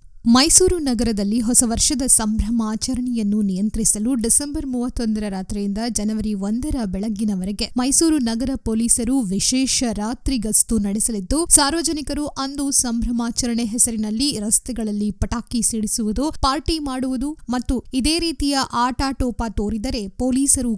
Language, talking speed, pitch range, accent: Kannada, 100 wpm, 215-265 Hz, native